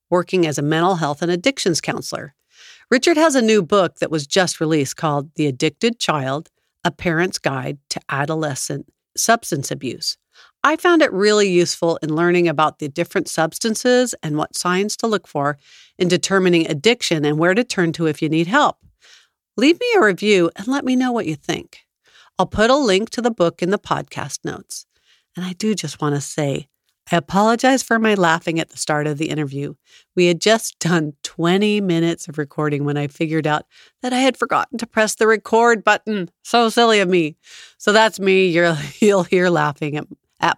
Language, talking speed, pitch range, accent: English, 195 wpm, 155-220 Hz, American